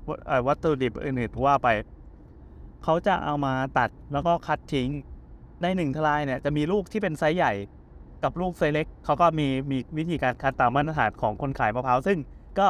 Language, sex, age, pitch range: Thai, male, 20-39, 130-175 Hz